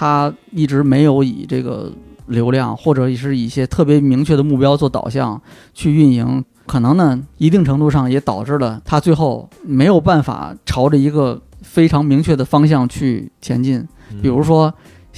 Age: 20-39